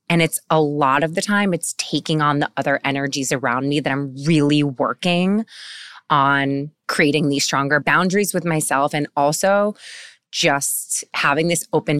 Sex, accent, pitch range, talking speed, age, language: female, American, 140-165 Hz, 160 wpm, 20-39, English